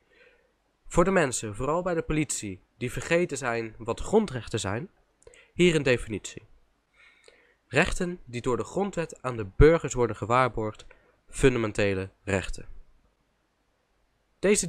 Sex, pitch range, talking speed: male, 110-160 Hz, 120 wpm